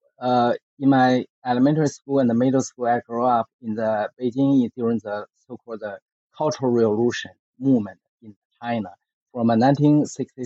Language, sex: English, male